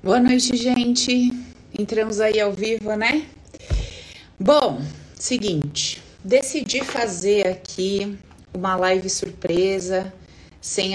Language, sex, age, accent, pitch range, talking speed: Spanish, female, 20-39, Brazilian, 170-220 Hz, 95 wpm